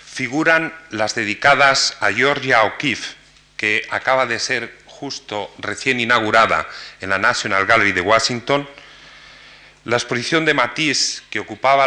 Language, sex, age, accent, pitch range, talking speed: Spanish, male, 40-59, Spanish, 110-130 Hz, 125 wpm